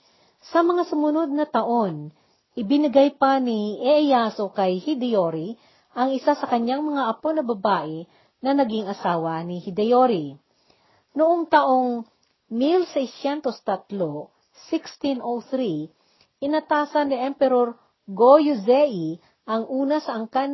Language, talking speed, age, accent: Filipino, 105 wpm, 40-59, native